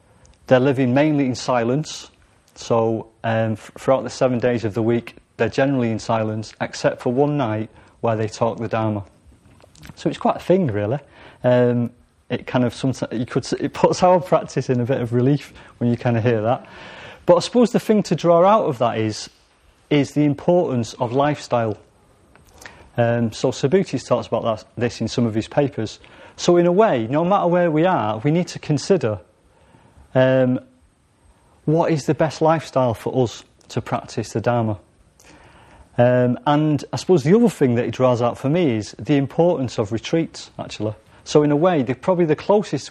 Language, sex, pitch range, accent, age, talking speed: English, male, 110-145 Hz, British, 30-49, 190 wpm